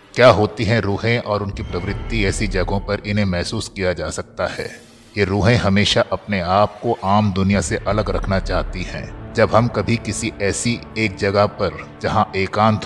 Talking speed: 180 wpm